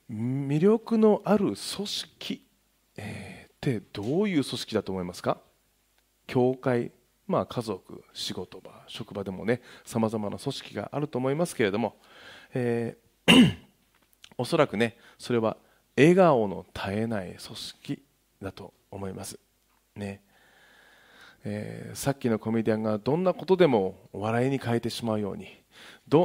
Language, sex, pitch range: Japanese, male, 100-140 Hz